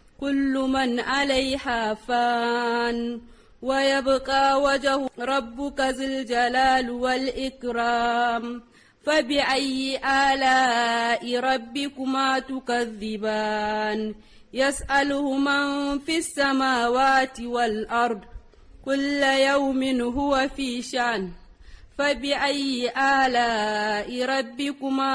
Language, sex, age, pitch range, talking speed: English, female, 30-49, 240-275 Hz, 60 wpm